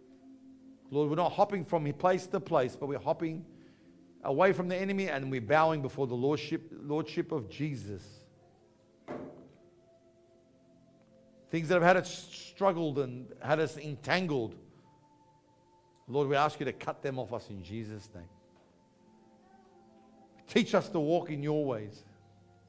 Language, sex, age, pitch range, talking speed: English, male, 50-69, 120-180 Hz, 140 wpm